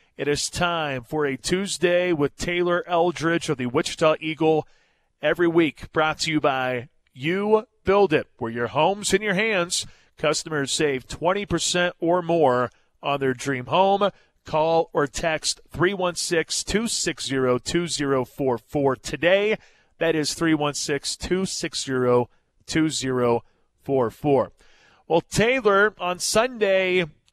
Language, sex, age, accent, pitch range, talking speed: English, male, 40-59, American, 140-175 Hz, 110 wpm